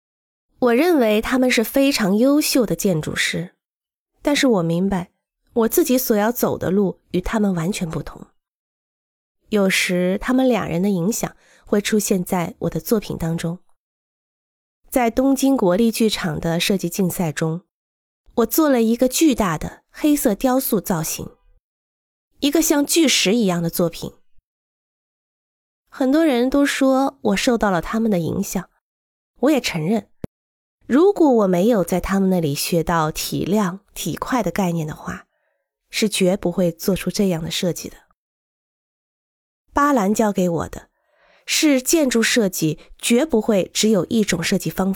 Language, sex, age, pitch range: Chinese, female, 20-39, 180-250 Hz